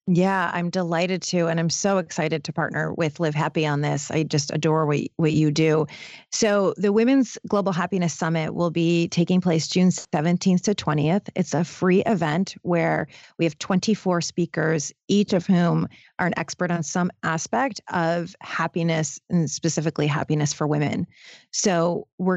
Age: 30-49